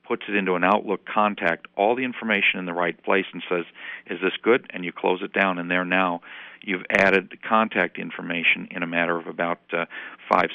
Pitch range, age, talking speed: 85-100 Hz, 50-69, 215 wpm